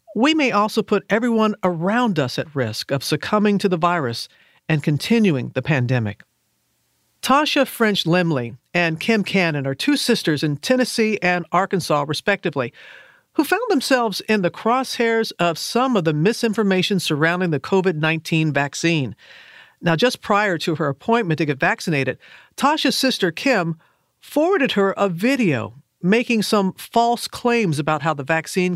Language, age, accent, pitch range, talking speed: English, 50-69, American, 160-225 Hz, 150 wpm